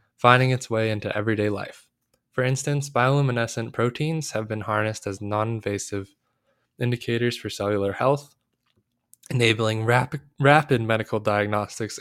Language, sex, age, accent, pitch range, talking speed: English, male, 20-39, American, 105-125 Hz, 120 wpm